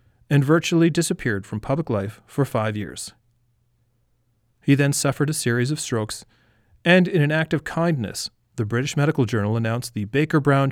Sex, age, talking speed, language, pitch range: male, 40-59, 160 wpm, English, 115-150 Hz